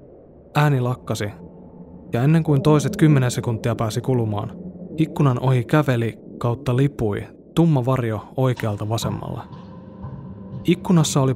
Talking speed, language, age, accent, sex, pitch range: 110 wpm, Finnish, 20-39, native, male, 110-135 Hz